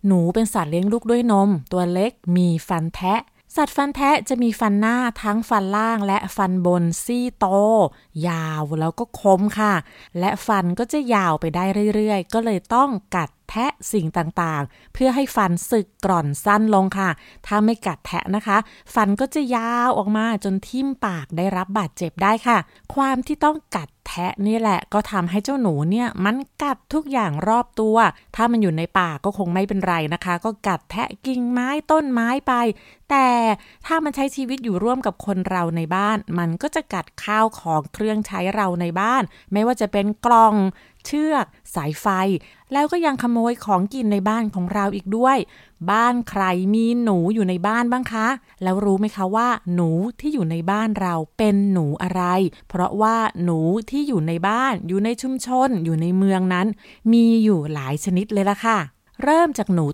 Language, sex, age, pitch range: Thai, female, 20-39, 185-235 Hz